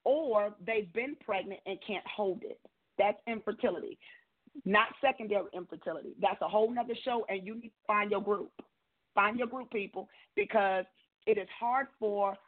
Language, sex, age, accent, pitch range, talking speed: English, female, 40-59, American, 195-235 Hz, 165 wpm